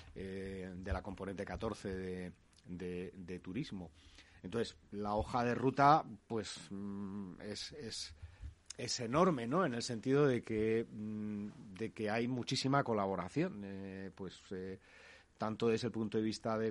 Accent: Spanish